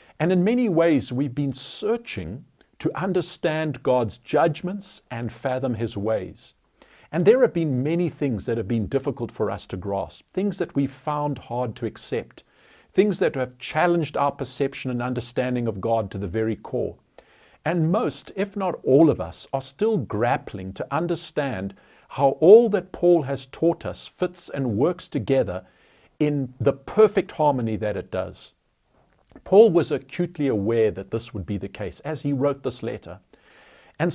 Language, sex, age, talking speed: English, male, 50-69, 170 wpm